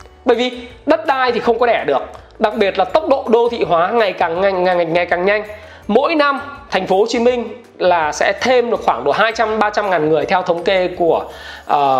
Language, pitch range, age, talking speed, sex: Vietnamese, 185-255 Hz, 20-39, 235 wpm, male